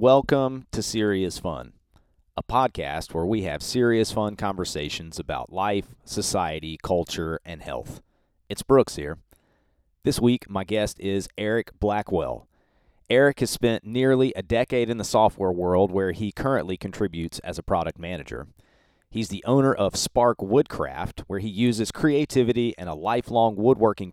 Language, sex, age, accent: English, male, 40-59, American